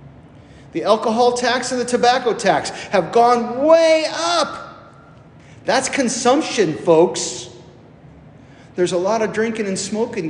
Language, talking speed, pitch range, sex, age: English, 120 wpm, 140-225 Hz, male, 40-59